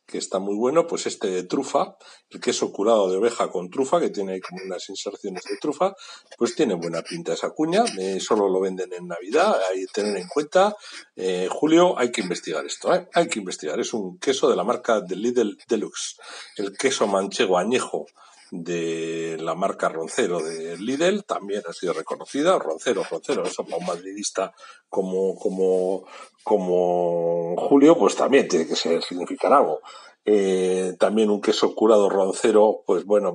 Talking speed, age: 175 wpm, 60-79